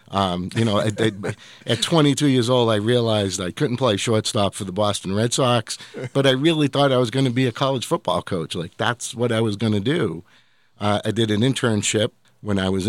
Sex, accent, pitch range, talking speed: male, American, 95-125 Hz, 230 wpm